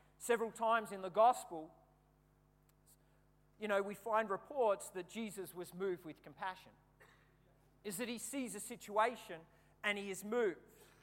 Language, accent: English, Australian